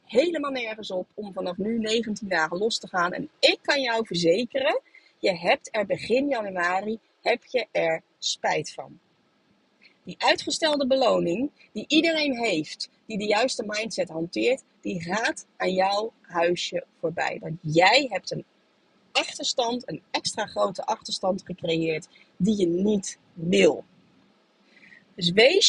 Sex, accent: female, Dutch